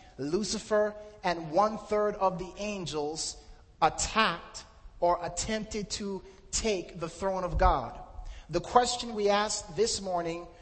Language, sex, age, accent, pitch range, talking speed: English, male, 30-49, American, 180-215 Hz, 120 wpm